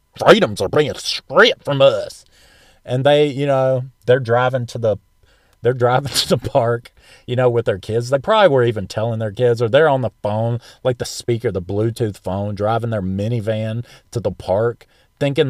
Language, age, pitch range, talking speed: English, 40-59, 115-155 Hz, 190 wpm